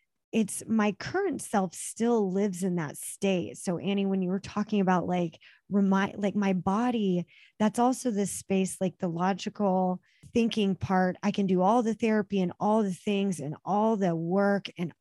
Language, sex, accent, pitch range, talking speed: English, female, American, 175-200 Hz, 180 wpm